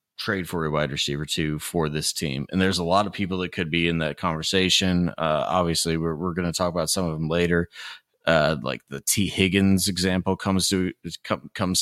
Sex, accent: male, American